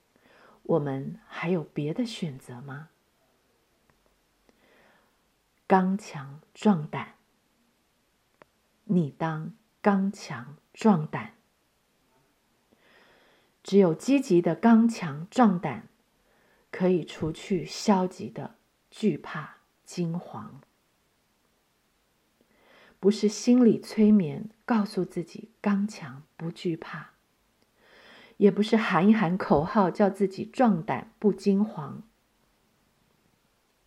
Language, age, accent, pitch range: Chinese, 50-69, native, 160-210 Hz